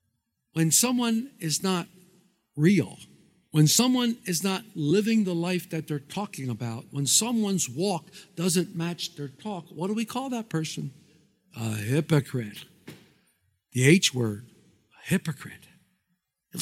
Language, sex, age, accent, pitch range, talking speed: English, male, 60-79, American, 185-275 Hz, 130 wpm